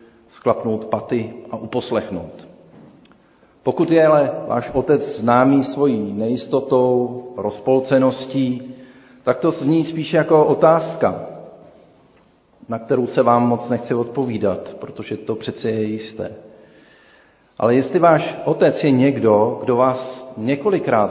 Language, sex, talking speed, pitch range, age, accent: Czech, male, 115 wpm, 110-145 Hz, 40-59, native